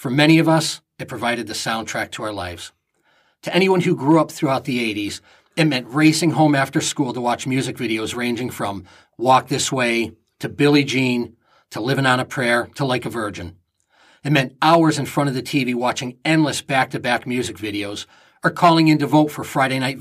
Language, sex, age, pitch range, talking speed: English, male, 40-59, 120-155 Hz, 200 wpm